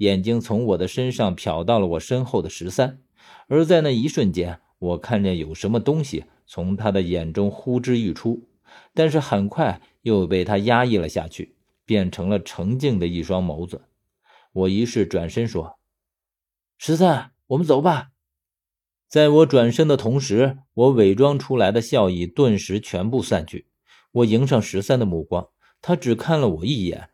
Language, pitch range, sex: Chinese, 95-130 Hz, male